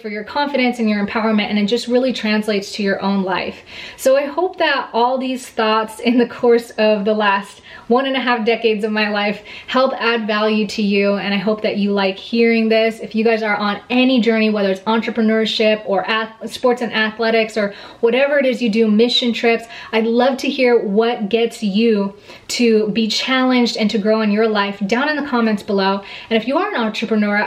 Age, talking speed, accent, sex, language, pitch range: 20-39, 215 wpm, American, female, English, 210-240 Hz